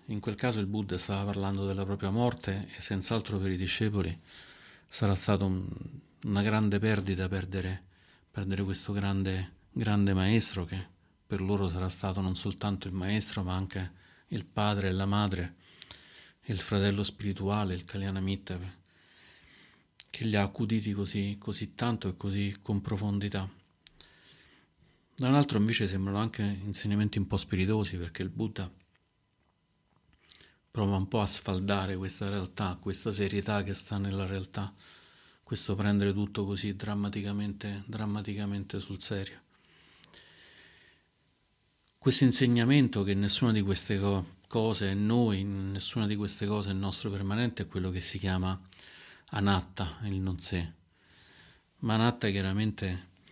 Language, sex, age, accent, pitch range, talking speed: Italian, male, 40-59, native, 95-105 Hz, 135 wpm